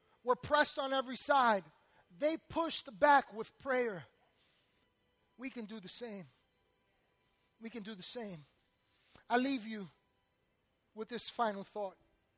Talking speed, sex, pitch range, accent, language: 130 wpm, male, 195-285 Hz, American, English